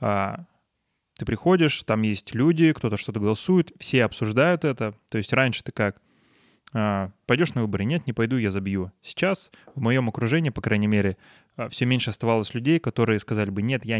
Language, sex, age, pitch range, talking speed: Russian, male, 20-39, 105-130 Hz, 170 wpm